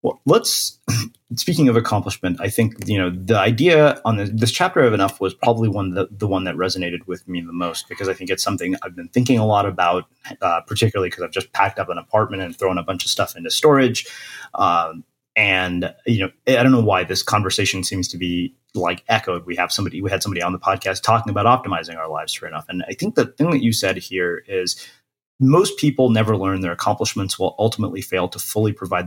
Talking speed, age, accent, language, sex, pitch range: 225 wpm, 30-49, American, English, male, 95-120 Hz